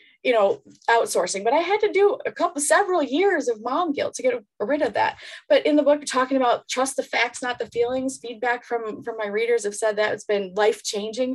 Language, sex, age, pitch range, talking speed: English, female, 20-39, 210-275 Hz, 225 wpm